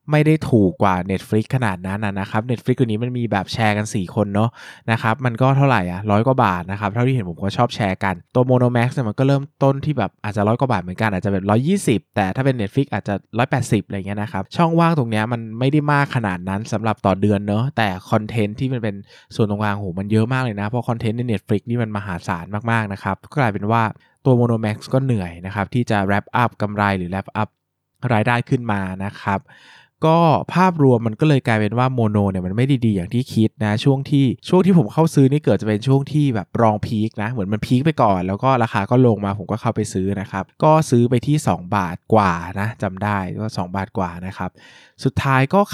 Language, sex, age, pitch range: Thai, male, 20-39, 100-125 Hz